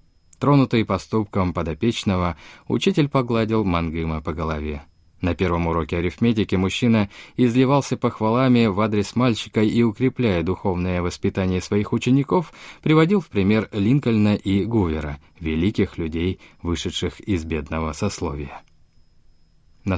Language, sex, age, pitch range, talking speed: Russian, male, 20-39, 85-120 Hz, 110 wpm